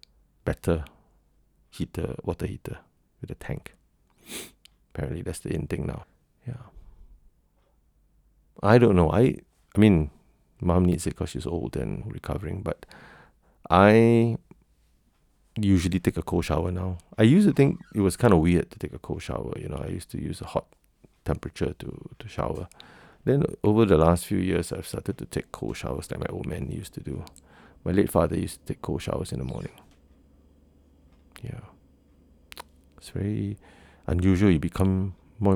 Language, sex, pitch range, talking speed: English, male, 70-95 Hz, 165 wpm